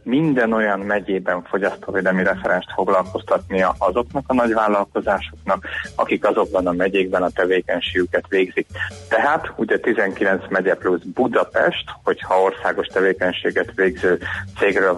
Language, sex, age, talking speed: Hungarian, male, 30-49, 110 wpm